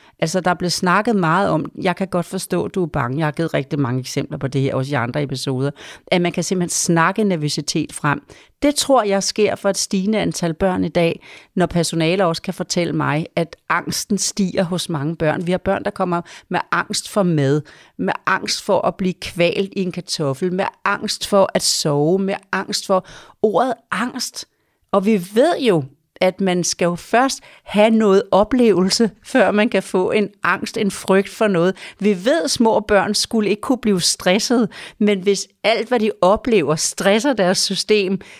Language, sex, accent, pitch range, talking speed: Danish, female, native, 175-210 Hz, 195 wpm